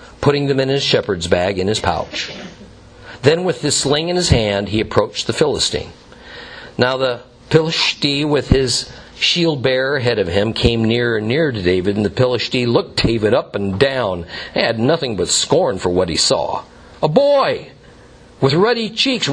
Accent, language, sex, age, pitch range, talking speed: American, English, male, 50-69, 115-170 Hz, 180 wpm